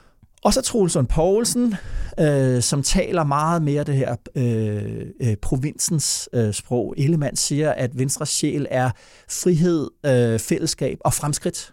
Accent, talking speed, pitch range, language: native, 135 wpm, 125-160 Hz, Danish